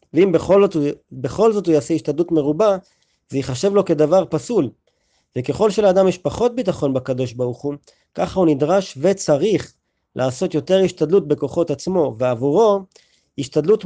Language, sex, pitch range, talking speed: Hebrew, male, 140-190 Hz, 145 wpm